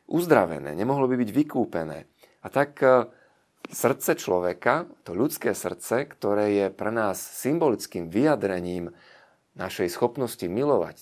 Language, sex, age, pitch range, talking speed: Slovak, male, 40-59, 95-125 Hz, 115 wpm